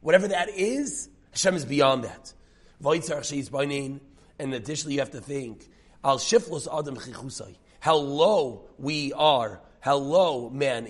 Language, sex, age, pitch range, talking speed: English, male, 30-49, 125-165 Hz, 115 wpm